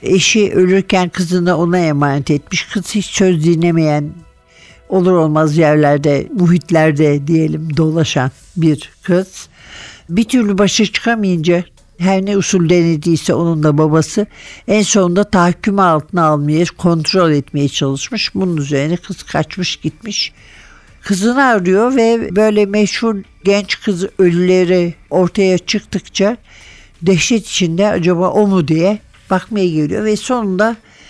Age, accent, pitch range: 60-79, native, 160-205 Hz